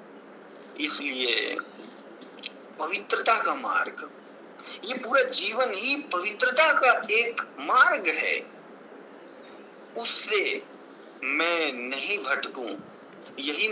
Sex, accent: male, native